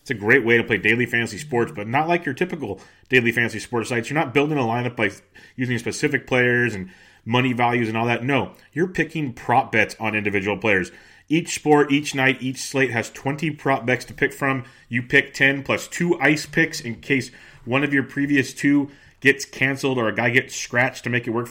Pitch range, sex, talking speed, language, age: 120-140 Hz, male, 220 wpm, English, 30-49